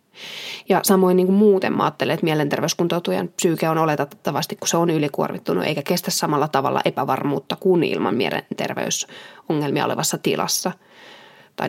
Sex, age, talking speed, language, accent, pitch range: female, 20-39, 130 wpm, Finnish, native, 160-190 Hz